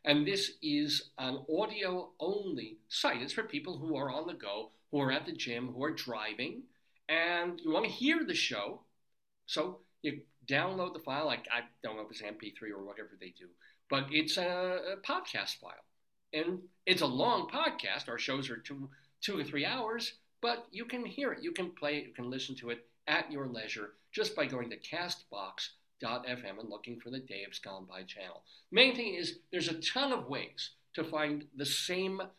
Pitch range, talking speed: 125-195 Hz, 195 wpm